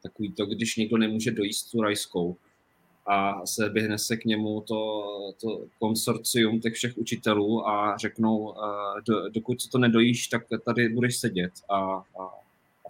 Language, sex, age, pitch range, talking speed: Czech, male, 20-39, 100-115 Hz, 150 wpm